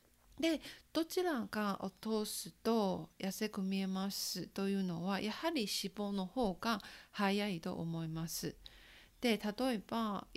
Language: Japanese